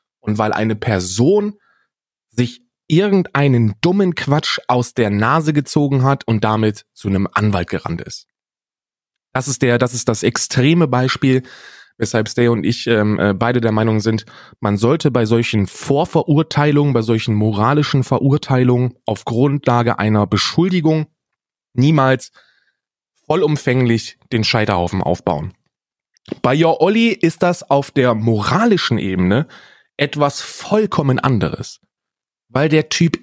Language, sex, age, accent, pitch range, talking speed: German, male, 20-39, German, 105-145 Hz, 125 wpm